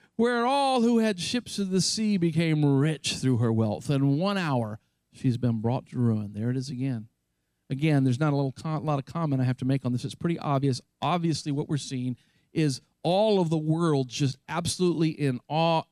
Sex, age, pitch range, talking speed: male, 50-69, 125-185 Hz, 205 wpm